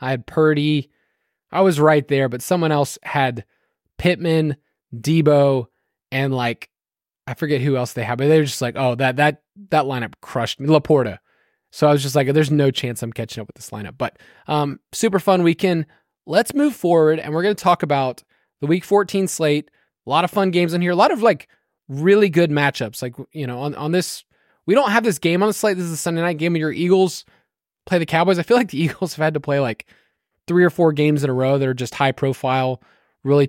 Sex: male